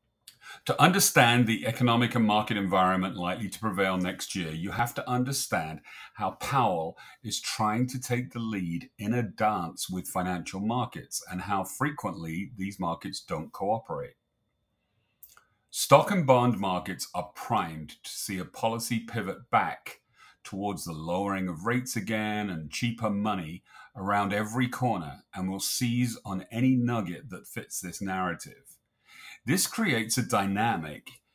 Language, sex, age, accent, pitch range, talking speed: English, male, 40-59, British, 95-125 Hz, 145 wpm